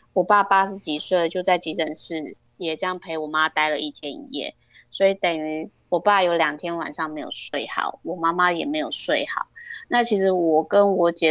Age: 20-39